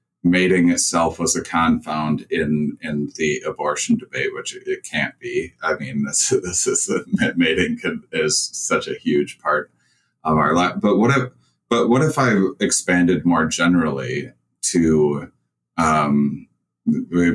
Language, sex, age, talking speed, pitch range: English, male, 30-49, 145 wpm, 75-100 Hz